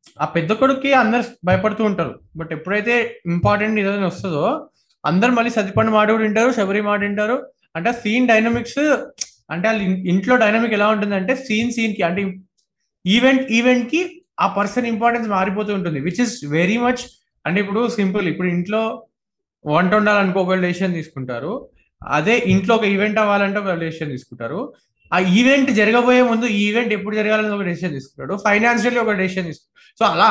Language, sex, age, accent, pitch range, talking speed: Telugu, male, 20-39, native, 180-230 Hz, 150 wpm